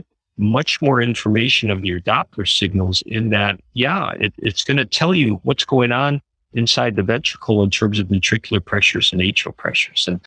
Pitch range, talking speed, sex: 95-125 Hz, 180 wpm, male